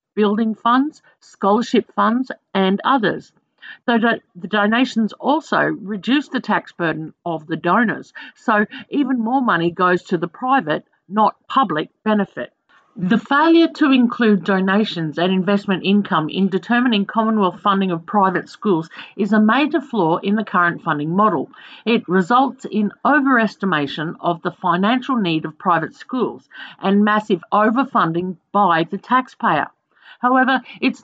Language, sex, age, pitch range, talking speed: English, female, 50-69, 185-240 Hz, 135 wpm